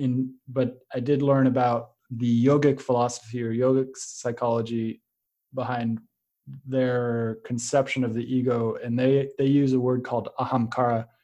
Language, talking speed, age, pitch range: English, 140 wpm, 20-39, 120-130 Hz